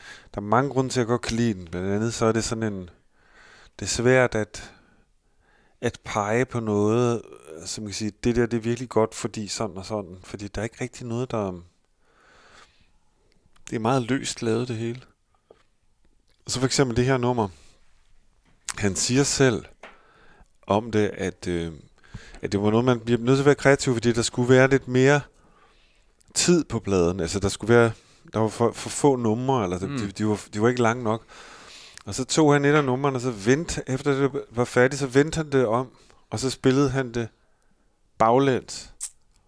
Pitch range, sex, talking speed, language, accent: 110-130 Hz, male, 200 wpm, English, Danish